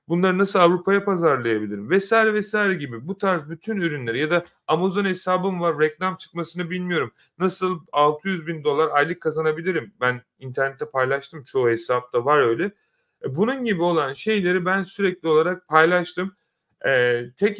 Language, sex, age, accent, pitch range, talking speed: Turkish, male, 40-59, native, 135-180 Hz, 145 wpm